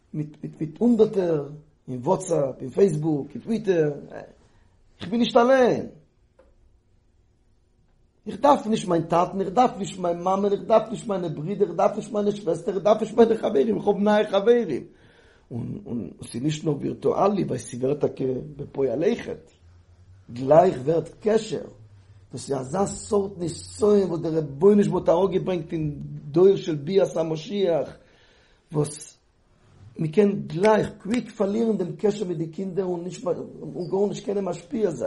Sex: male